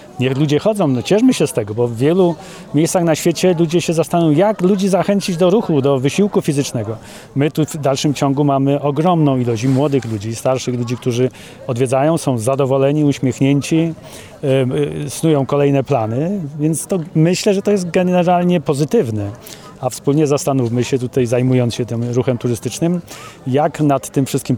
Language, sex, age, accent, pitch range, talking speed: English, male, 30-49, Polish, 125-150 Hz, 160 wpm